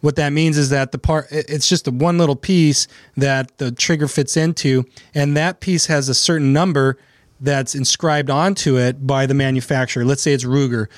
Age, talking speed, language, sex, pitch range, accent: 30-49, 195 wpm, English, male, 135-160 Hz, American